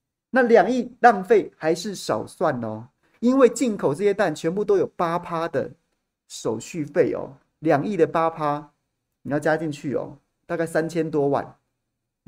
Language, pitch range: Chinese, 145-200 Hz